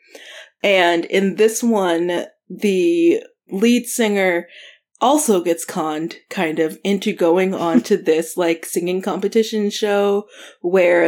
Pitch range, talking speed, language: 165-210 Hz, 120 wpm, English